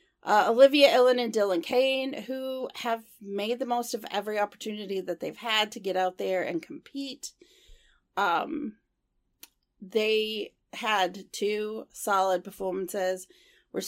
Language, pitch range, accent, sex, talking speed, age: English, 195-265 Hz, American, female, 130 wpm, 40-59